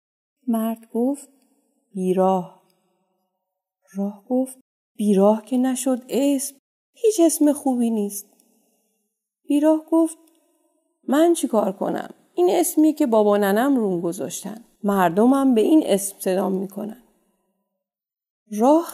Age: 30-49